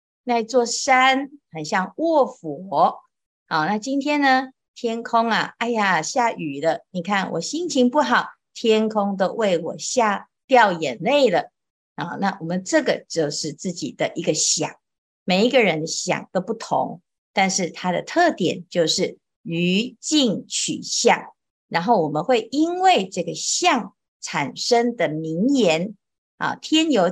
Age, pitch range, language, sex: 50-69, 170-245 Hz, Chinese, female